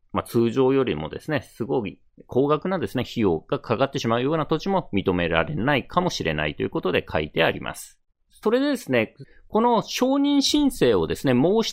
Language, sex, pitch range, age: Japanese, male, 135-220 Hz, 40-59